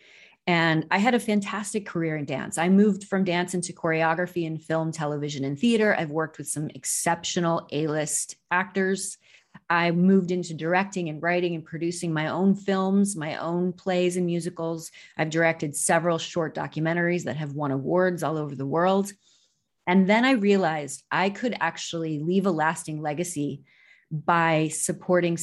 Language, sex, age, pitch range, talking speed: English, female, 30-49, 150-180 Hz, 160 wpm